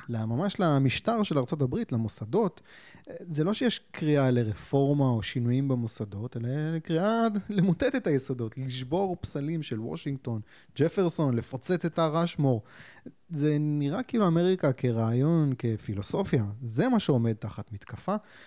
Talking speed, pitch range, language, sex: 120 wpm, 120-165 Hz, Hebrew, male